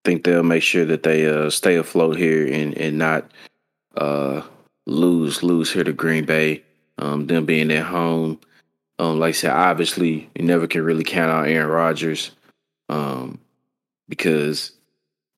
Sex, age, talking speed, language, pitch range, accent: male, 20-39, 160 wpm, English, 80-90 Hz, American